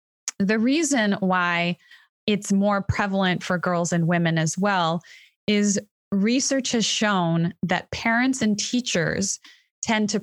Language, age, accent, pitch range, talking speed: English, 20-39, American, 175-210 Hz, 130 wpm